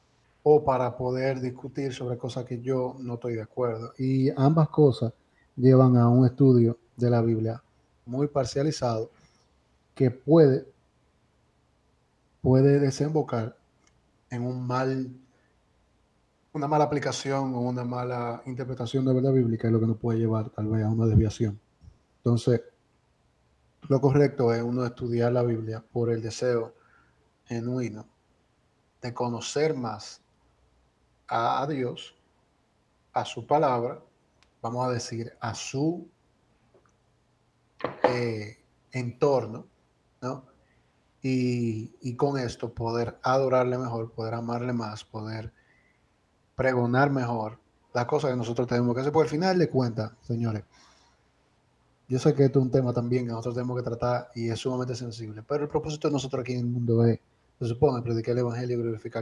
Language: Spanish